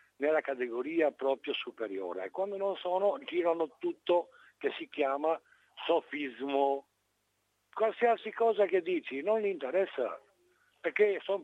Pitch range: 115-190 Hz